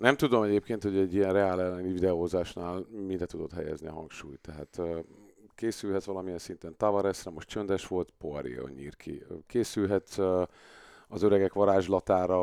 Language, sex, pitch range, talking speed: Hungarian, male, 95-105 Hz, 135 wpm